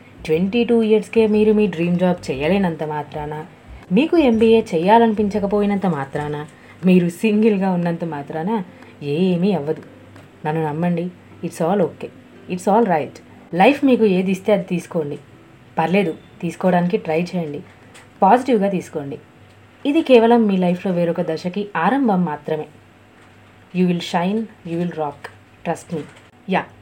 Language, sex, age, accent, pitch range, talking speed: Telugu, female, 30-49, native, 155-200 Hz, 125 wpm